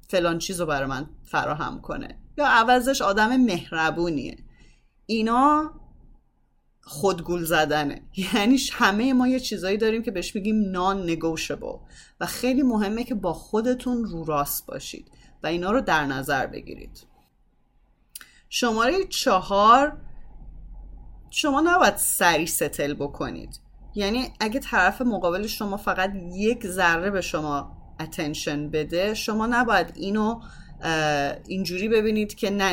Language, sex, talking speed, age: English, female, 120 wpm, 30-49